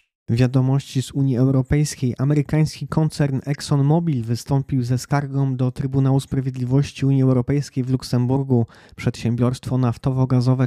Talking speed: 105 wpm